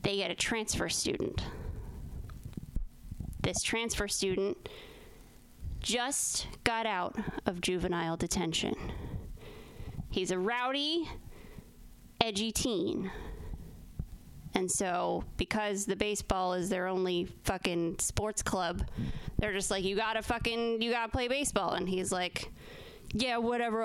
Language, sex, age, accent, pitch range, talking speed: English, female, 20-39, American, 195-265 Hz, 115 wpm